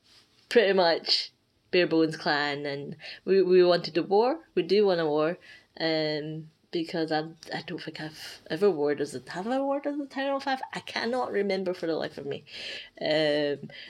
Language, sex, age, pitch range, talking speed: English, female, 20-39, 155-195 Hz, 185 wpm